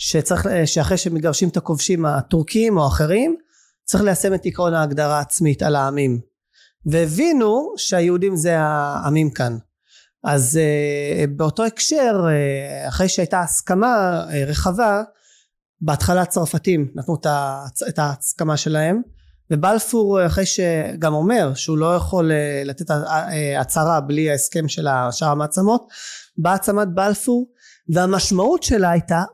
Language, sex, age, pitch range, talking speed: Hebrew, male, 30-49, 150-195 Hz, 110 wpm